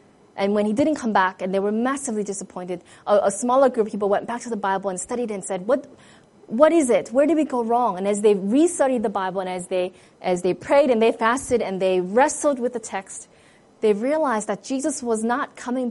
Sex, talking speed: female, 240 wpm